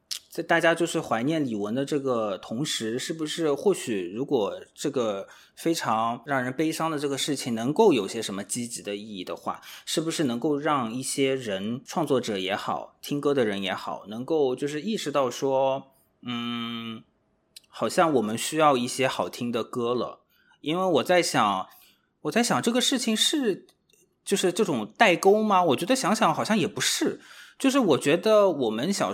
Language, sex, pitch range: Chinese, male, 120-160 Hz